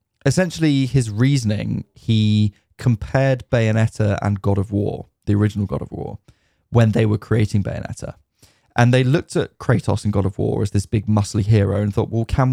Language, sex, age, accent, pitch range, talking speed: English, male, 10-29, British, 105-125 Hz, 180 wpm